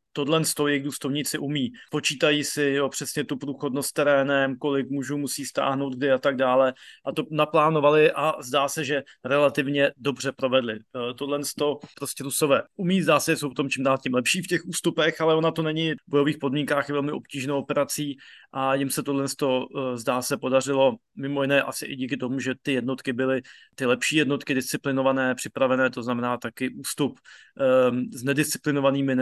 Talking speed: 180 wpm